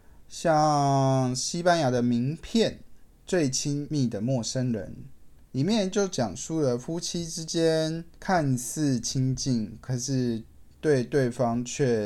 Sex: male